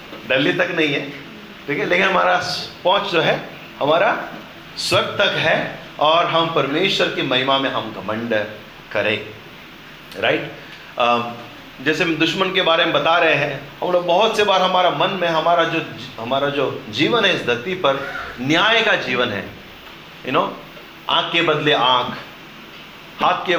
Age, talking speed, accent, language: 30-49, 145 wpm, native, Hindi